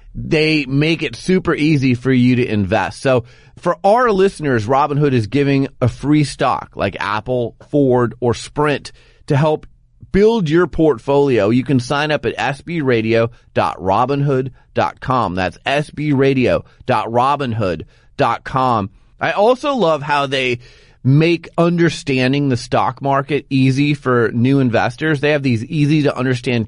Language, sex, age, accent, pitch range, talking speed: English, male, 30-49, American, 125-155 Hz, 125 wpm